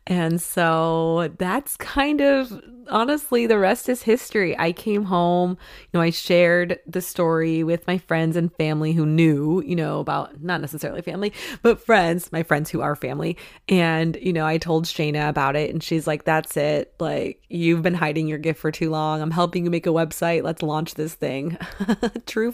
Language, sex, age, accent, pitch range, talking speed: English, female, 30-49, American, 160-180 Hz, 190 wpm